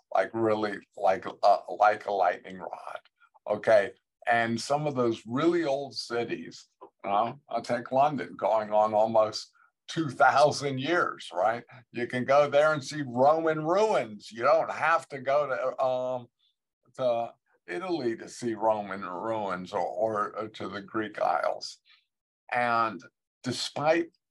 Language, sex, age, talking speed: English, male, 50-69, 140 wpm